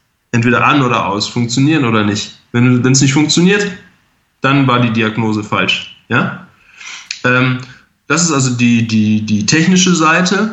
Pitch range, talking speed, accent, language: 115-145 Hz, 135 wpm, German, German